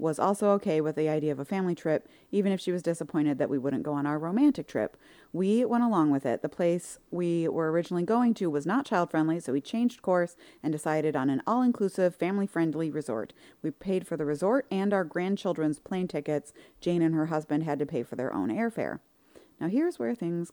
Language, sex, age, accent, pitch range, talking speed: English, female, 30-49, American, 155-195 Hz, 215 wpm